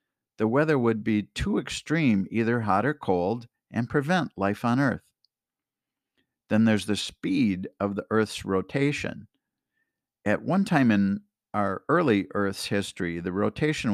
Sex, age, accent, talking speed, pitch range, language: male, 50-69, American, 140 wpm, 100-135 Hz, English